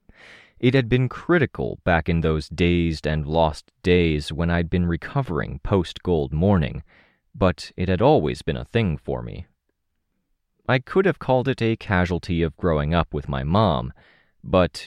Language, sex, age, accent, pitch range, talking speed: English, male, 30-49, American, 75-110 Hz, 160 wpm